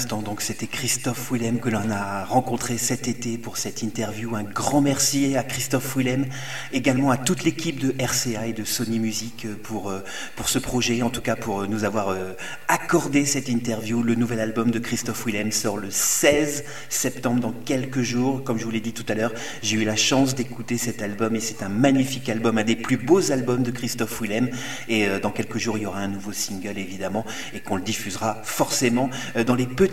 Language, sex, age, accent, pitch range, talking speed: French, male, 30-49, French, 115-135 Hz, 215 wpm